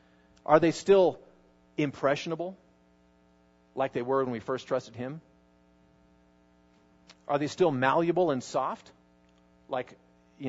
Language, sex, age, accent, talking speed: English, male, 40-59, American, 115 wpm